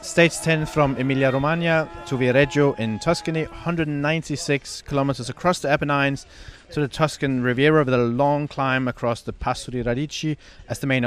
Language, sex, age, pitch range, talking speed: English, male, 30-49, 115-145 Hz, 155 wpm